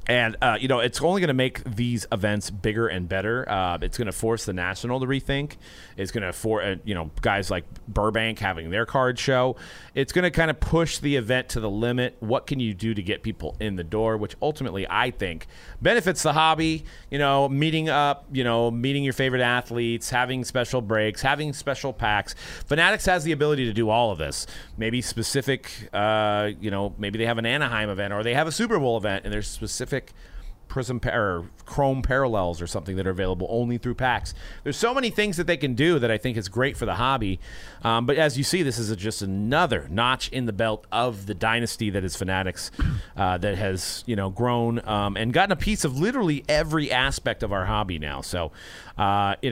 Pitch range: 100-135 Hz